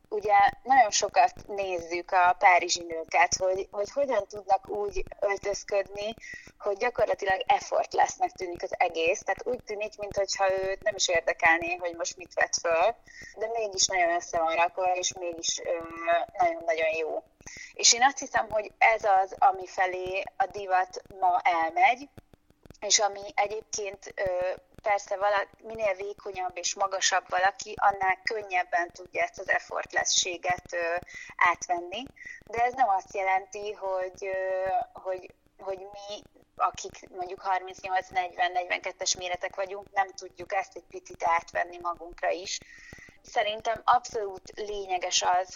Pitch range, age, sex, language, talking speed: 180-220 Hz, 30-49, female, Hungarian, 135 wpm